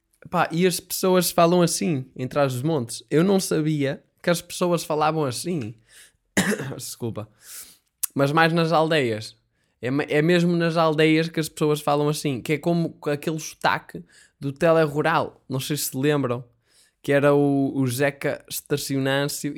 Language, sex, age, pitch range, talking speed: Portuguese, male, 10-29, 120-155 Hz, 155 wpm